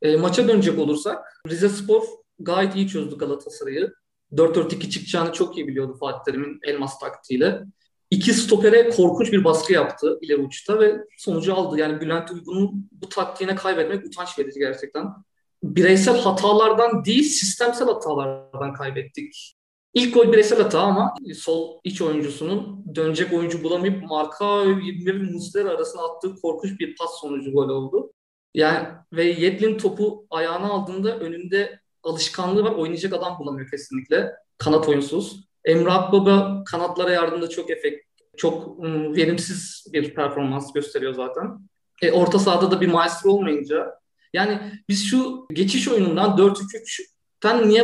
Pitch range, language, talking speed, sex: 160-210 Hz, Turkish, 135 wpm, male